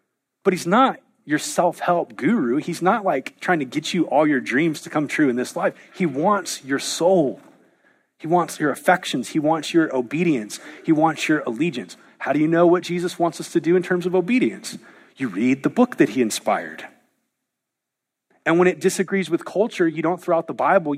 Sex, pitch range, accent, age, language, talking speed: male, 140-190 Hz, American, 30-49, English, 205 wpm